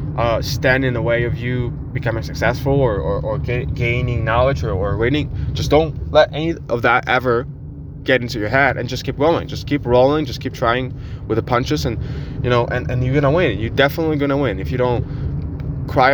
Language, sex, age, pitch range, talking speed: English, male, 20-39, 120-140 Hz, 210 wpm